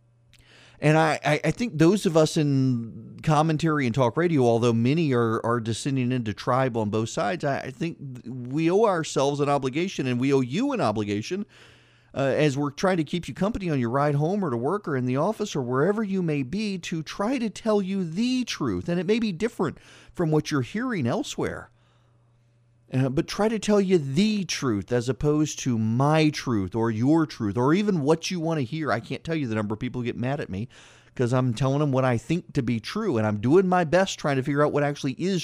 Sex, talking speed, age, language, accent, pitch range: male, 230 wpm, 40-59, English, American, 120-160 Hz